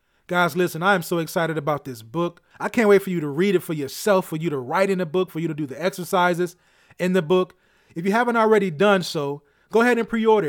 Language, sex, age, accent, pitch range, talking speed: English, male, 30-49, American, 155-210 Hz, 265 wpm